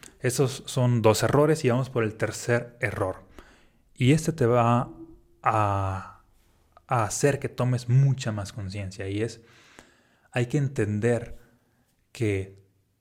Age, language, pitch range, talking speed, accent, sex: 30-49, Spanish, 110-140 Hz, 130 wpm, Mexican, male